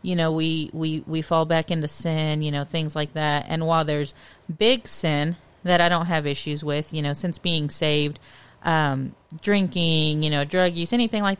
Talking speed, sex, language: 200 wpm, female, English